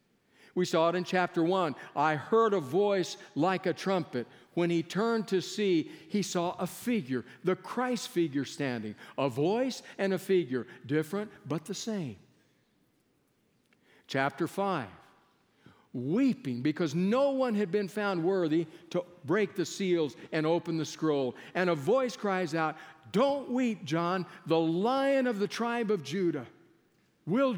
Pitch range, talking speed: 155-200 Hz, 150 wpm